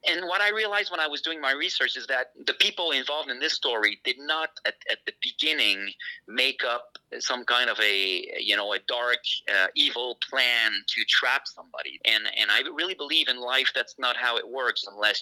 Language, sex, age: English, male, 30-49